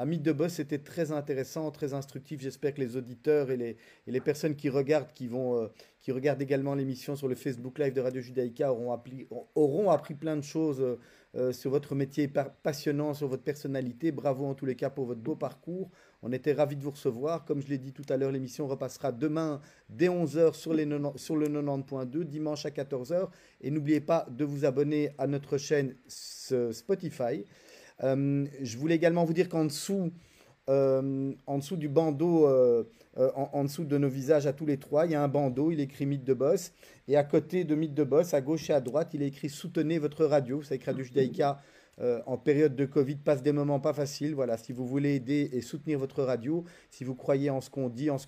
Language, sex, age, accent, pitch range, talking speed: French, male, 40-59, French, 135-155 Hz, 225 wpm